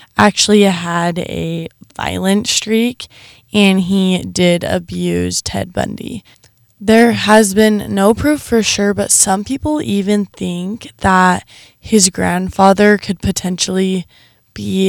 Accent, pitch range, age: American, 170-195 Hz, 10-29